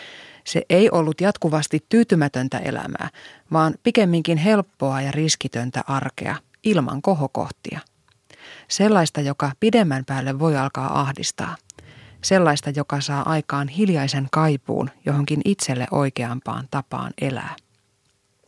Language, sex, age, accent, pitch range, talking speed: Finnish, female, 30-49, native, 140-180 Hz, 105 wpm